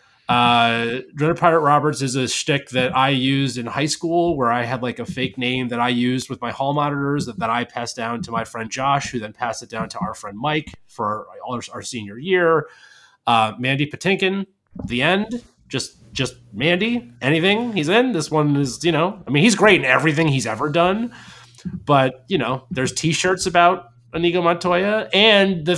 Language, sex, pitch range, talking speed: English, male, 125-170 Hz, 200 wpm